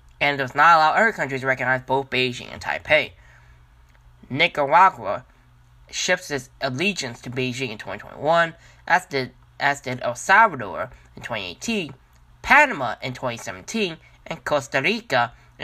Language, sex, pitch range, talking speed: English, male, 115-165 Hz, 125 wpm